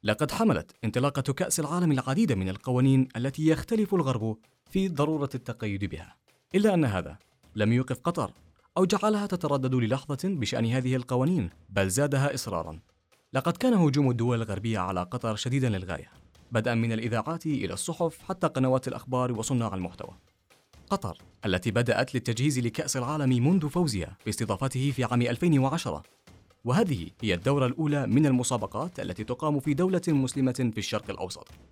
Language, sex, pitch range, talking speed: Arabic, male, 105-145 Hz, 145 wpm